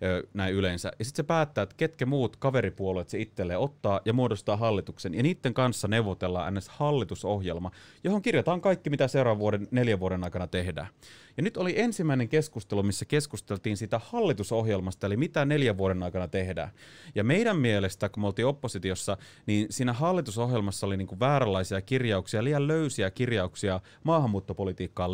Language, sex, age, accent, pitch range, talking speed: Finnish, male, 30-49, native, 95-130 Hz, 155 wpm